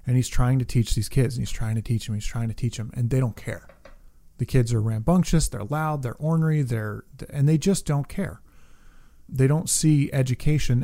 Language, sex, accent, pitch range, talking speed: English, male, American, 115-140 Hz, 220 wpm